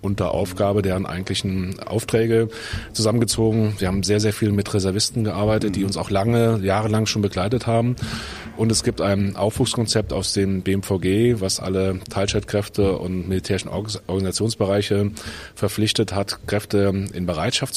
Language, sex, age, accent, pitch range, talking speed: German, male, 30-49, German, 95-110 Hz, 140 wpm